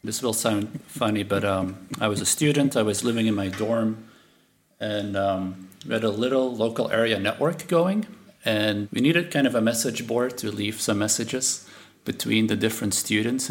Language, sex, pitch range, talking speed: English, male, 105-125 Hz, 185 wpm